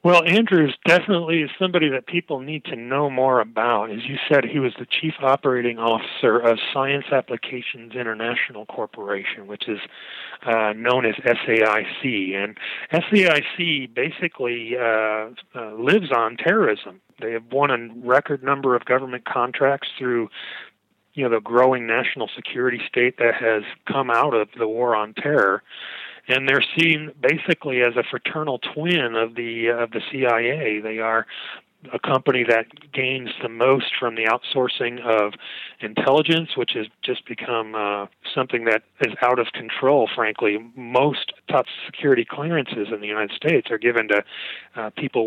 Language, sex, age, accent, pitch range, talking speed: English, male, 40-59, American, 115-150 Hz, 165 wpm